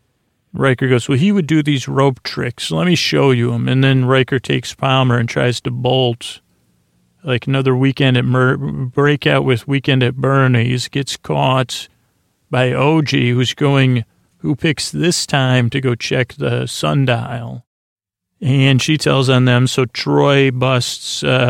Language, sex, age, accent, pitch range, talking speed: English, male, 40-59, American, 120-135 Hz, 155 wpm